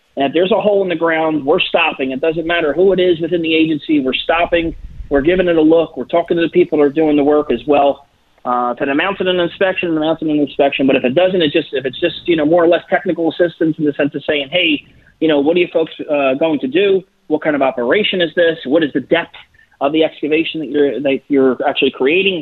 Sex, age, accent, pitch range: male, 30-49, American, 145-185 Hz